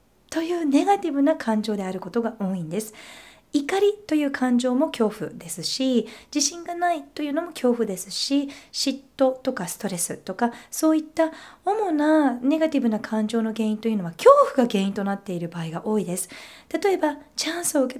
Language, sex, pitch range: Japanese, female, 200-305 Hz